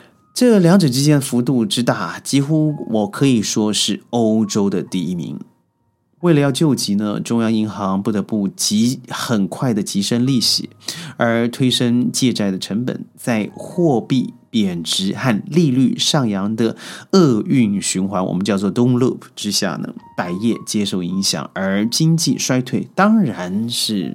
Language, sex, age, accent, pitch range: Chinese, male, 30-49, native, 110-155 Hz